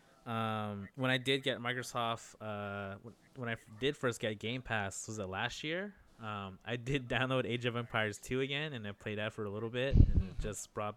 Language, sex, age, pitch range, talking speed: English, male, 20-39, 105-120 Hz, 225 wpm